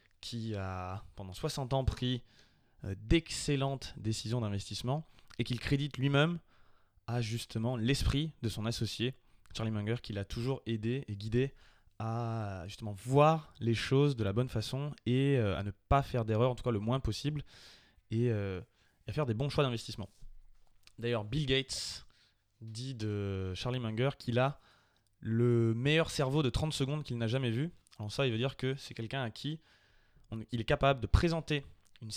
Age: 20-39